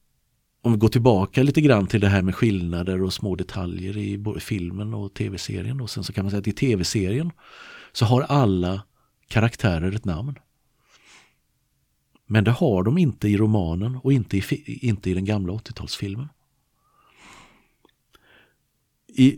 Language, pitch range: Swedish, 95-125 Hz